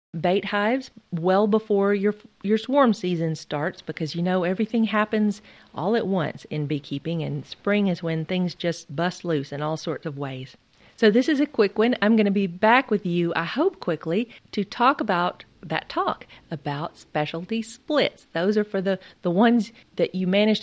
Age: 40-59